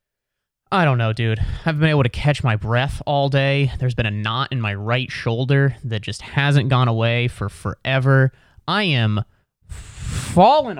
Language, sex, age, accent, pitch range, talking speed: English, male, 20-39, American, 115-145 Hz, 180 wpm